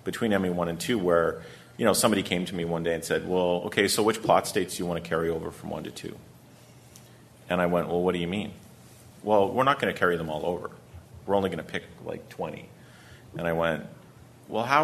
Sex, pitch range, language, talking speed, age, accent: male, 85-100 Hz, English, 245 wpm, 30-49, American